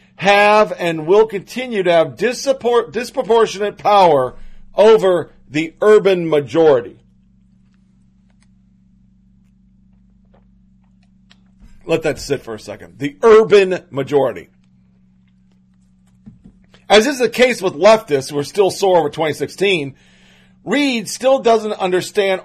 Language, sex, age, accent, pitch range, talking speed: English, male, 40-59, American, 140-190 Hz, 100 wpm